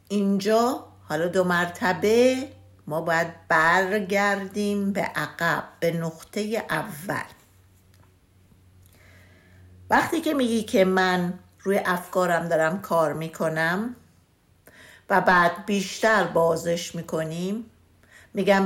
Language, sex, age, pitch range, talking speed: Persian, female, 60-79, 165-210 Hz, 90 wpm